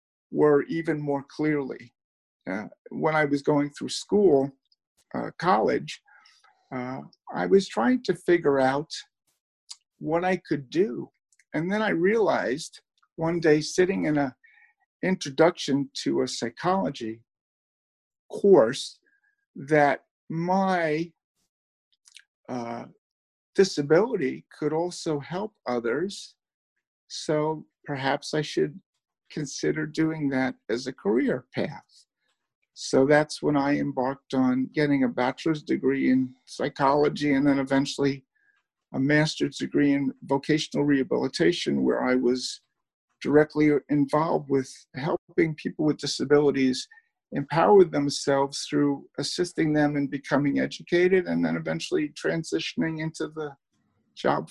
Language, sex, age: English, male, 50-69